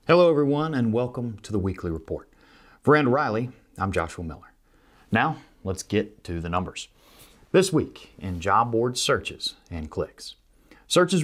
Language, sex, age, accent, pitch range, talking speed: English, male, 30-49, American, 95-135 Hz, 155 wpm